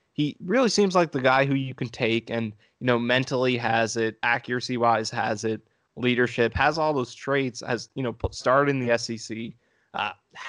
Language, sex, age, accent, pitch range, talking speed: English, male, 20-39, American, 115-130 Hz, 185 wpm